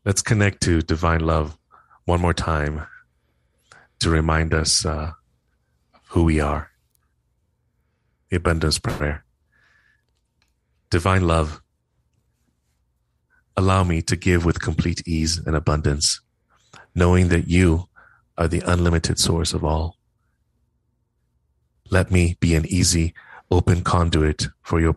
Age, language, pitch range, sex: 30-49, English, 75-90 Hz, male